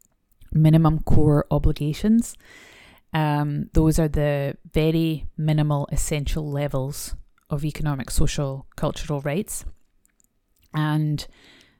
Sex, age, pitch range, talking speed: female, 30-49, 135-160 Hz, 85 wpm